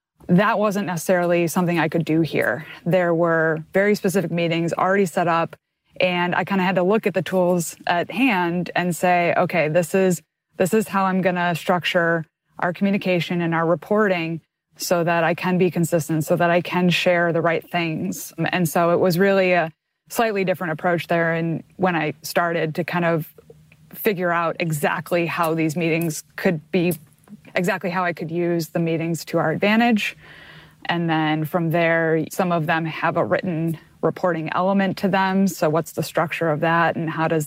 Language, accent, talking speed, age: English, American, 185 wpm, 20-39